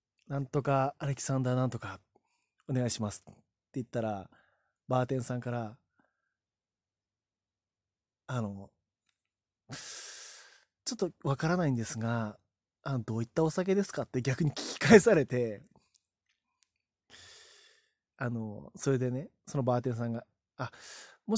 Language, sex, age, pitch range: Japanese, male, 20-39, 115-170 Hz